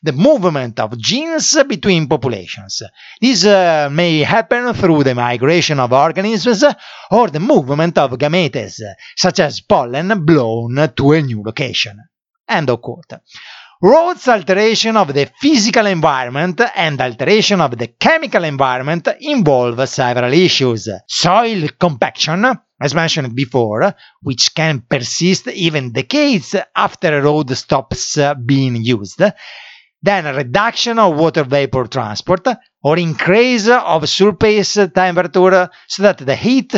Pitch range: 140-215 Hz